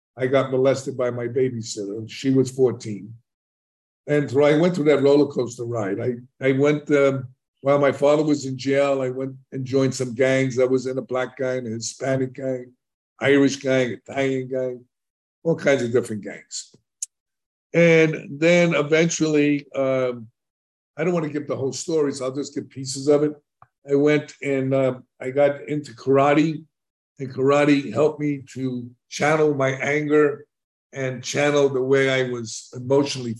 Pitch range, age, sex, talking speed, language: 130-145 Hz, 60-79, male, 165 wpm, English